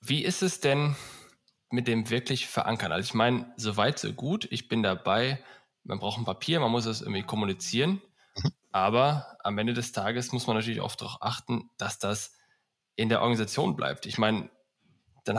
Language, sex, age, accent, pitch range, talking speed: German, male, 10-29, German, 105-125 Hz, 185 wpm